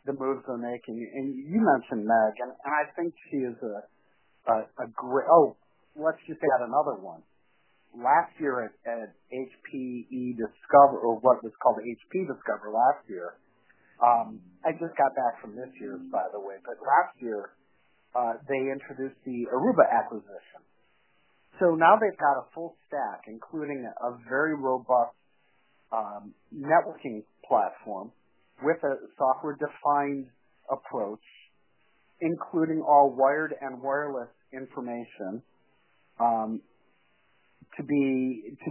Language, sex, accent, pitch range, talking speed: English, male, American, 120-145 Hz, 135 wpm